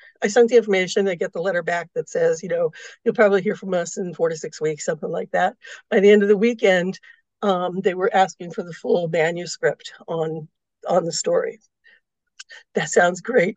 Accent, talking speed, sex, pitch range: American, 210 wpm, female, 175-235 Hz